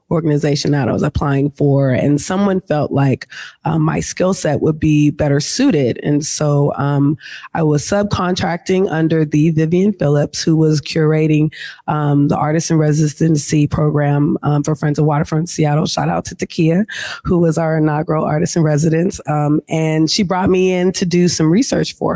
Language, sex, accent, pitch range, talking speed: English, female, American, 155-190 Hz, 180 wpm